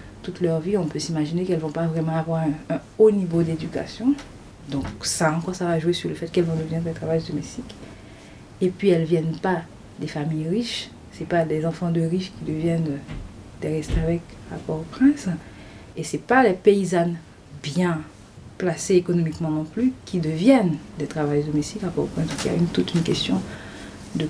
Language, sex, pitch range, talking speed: French, female, 155-180 Hz, 190 wpm